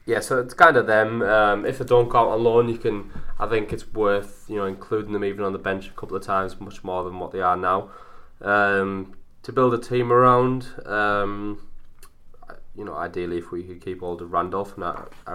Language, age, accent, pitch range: English, 20-39, British, 85-105 Hz